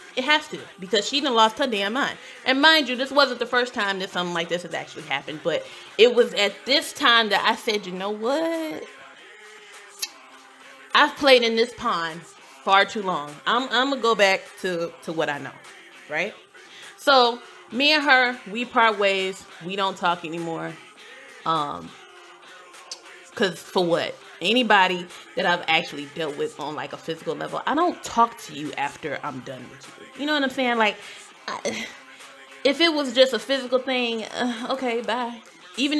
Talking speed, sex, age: 180 wpm, female, 20-39